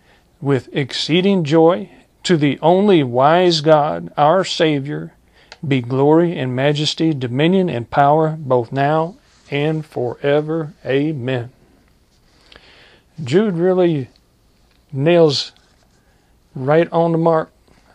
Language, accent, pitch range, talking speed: English, American, 135-165 Hz, 95 wpm